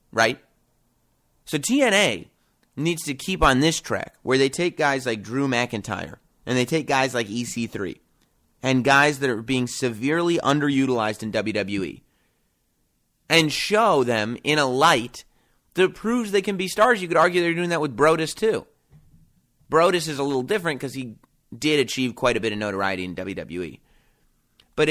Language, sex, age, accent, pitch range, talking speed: English, male, 30-49, American, 110-145 Hz, 165 wpm